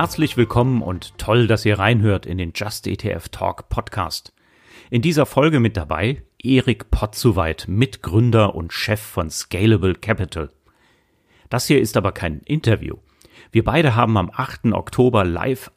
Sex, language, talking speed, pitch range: male, German, 150 wpm, 95-115 Hz